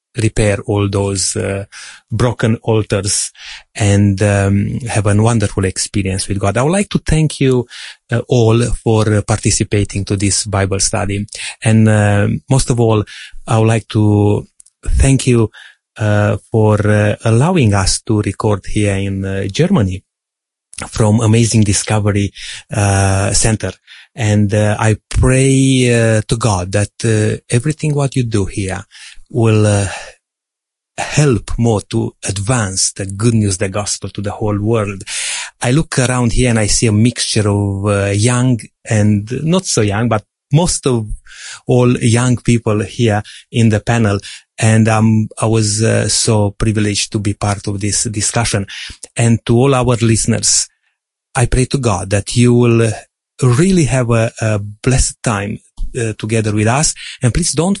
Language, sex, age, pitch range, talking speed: English, male, 30-49, 105-120 Hz, 155 wpm